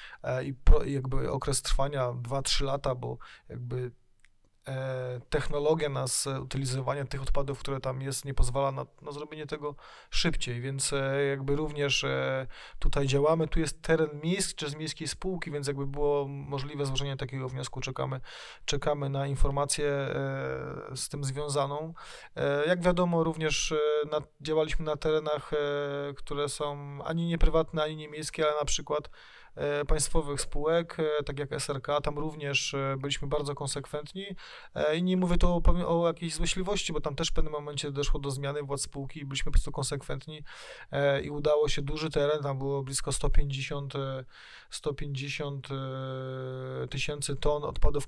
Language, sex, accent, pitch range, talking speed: Polish, male, native, 135-150 Hz, 150 wpm